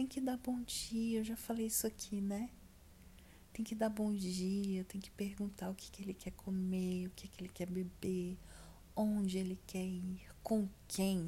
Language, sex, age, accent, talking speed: Portuguese, female, 40-59, Brazilian, 195 wpm